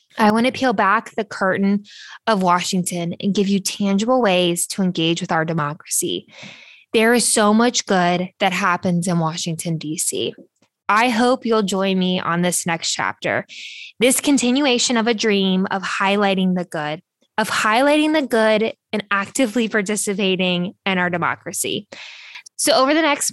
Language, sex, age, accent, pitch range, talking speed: English, female, 10-29, American, 185-235 Hz, 155 wpm